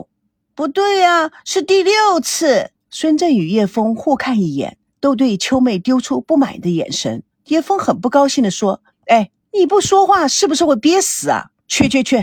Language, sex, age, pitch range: Chinese, female, 50-69, 210-290 Hz